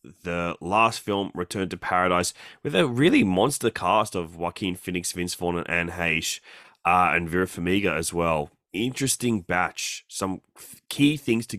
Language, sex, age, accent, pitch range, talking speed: English, male, 20-39, Australian, 85-110 Hz, 165 wpm